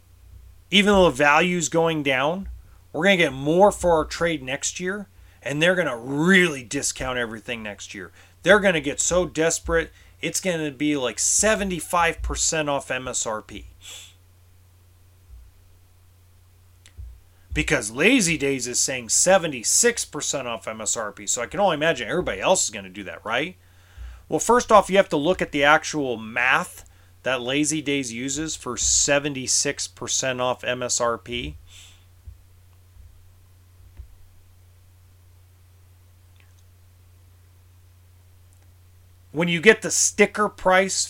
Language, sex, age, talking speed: English, male, 30-49, 125 wpm